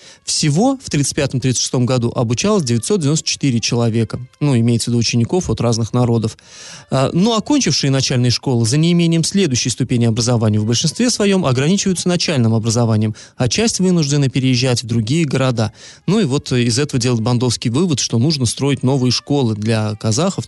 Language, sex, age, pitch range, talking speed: Russian, male, 20-39, 125-175 Hz, 150 wpm